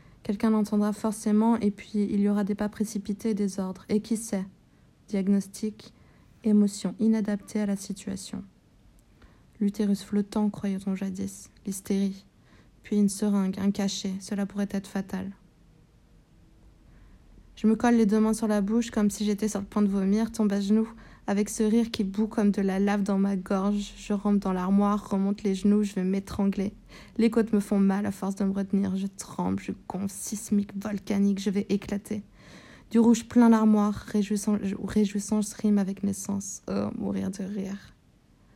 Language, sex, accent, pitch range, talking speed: French, female, French, 195-215 Hz, 175 wpm